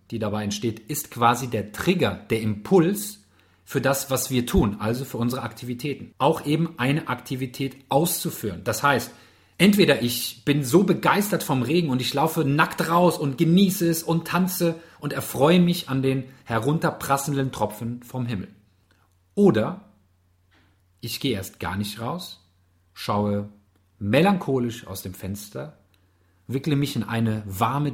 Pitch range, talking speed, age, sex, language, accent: 95-145 Hz, 145 wpm, 40-59, male, German, German